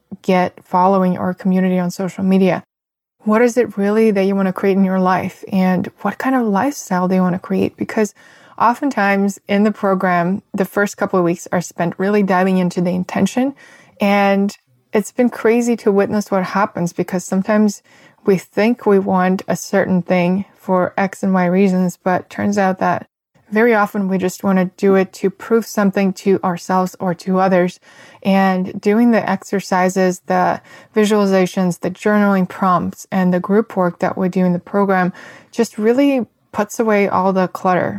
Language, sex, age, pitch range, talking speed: English, female, 20-39, 185-205 Hz, 180 wpm